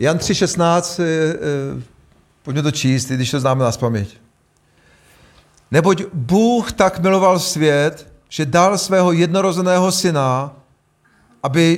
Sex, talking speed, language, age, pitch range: male, 115 wpm, Czech, 40-59, 130-170 Hz